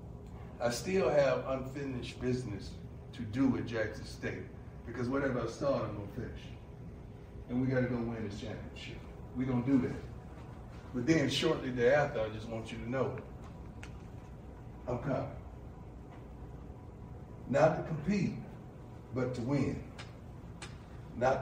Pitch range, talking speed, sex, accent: 120-150 Hz, 140 wpm, male, American